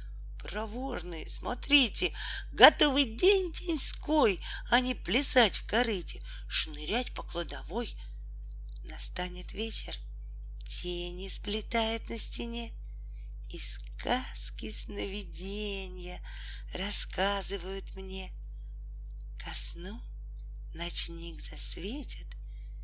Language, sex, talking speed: Russian, female, 70 wpm